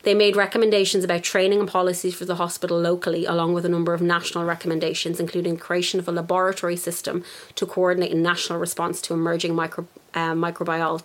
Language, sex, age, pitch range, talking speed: English, female, 30-49, 170-195 Hz, 185 wpm